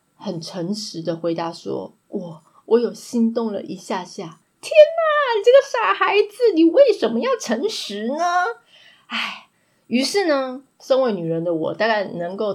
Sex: female